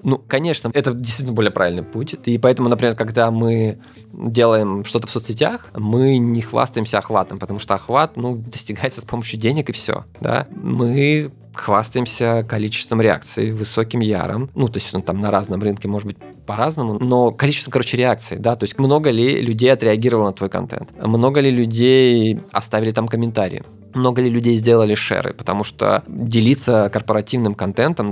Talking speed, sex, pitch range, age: 165 wpm, male, 105-125 Hz, 20-39